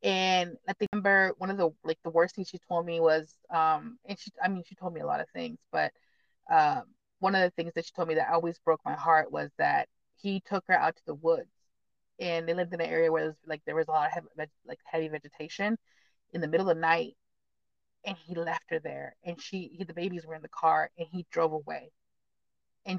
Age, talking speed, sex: 20-39, 245 wpm, female